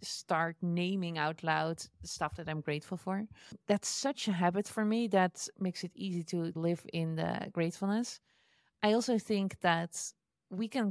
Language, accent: Dutch, Dutch